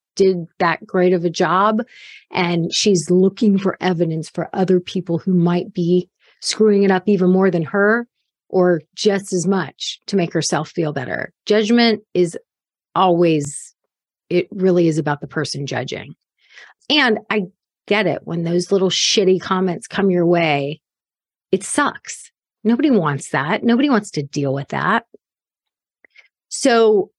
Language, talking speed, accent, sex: English, 150 wpm, American, female